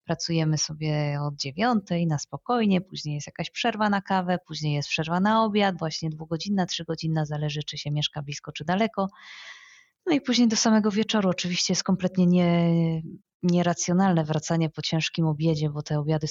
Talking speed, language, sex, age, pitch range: 160 wpm, Polish, female, 20-39, 160-190 Hz